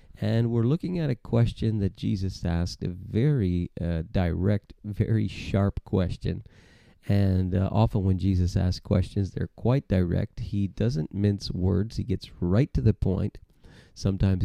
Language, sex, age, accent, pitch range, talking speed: English, male, 40-59, American, 95-110 Hz, 155 wpm